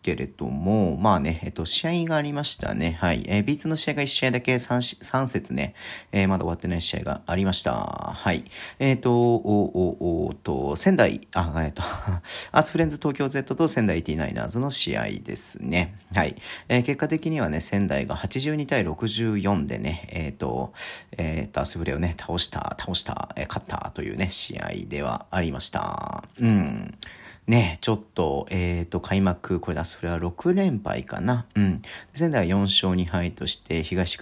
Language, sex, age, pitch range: Japanese, male, 40-59, 85-125 Hz